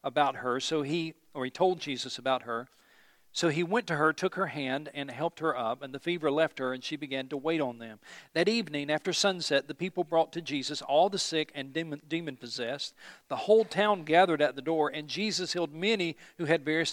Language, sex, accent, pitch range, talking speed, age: English, male, American, 140-175 Hz, 225 wpm, 50-69